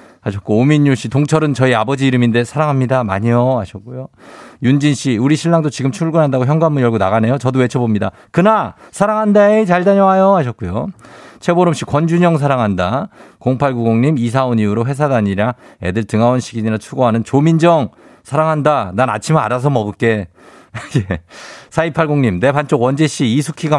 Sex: male